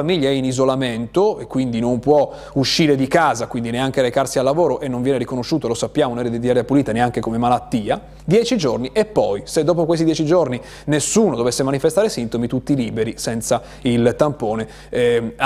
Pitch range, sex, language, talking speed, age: 125-195 Hz, male, Italian, 185 wpm, 30-49